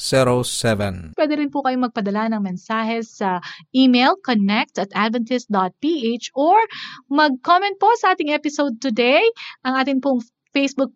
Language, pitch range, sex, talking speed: Filipino, 210-280 Hz, female, 120 wpm